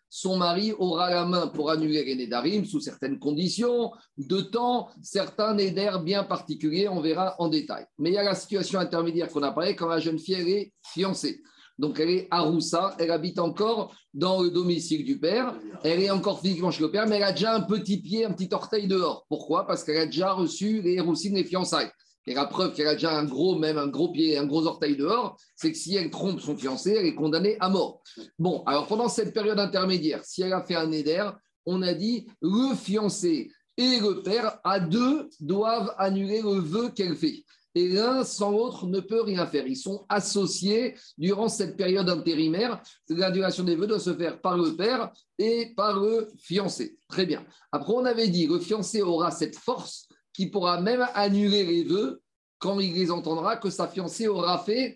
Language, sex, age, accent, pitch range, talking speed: French, male, 50-69, French, 170-215 Hz, 205 wpm